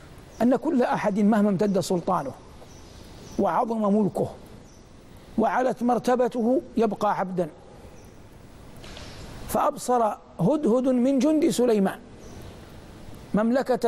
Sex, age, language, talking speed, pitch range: male, 60-79, Arabic, 80 wpm, 195-245 Hz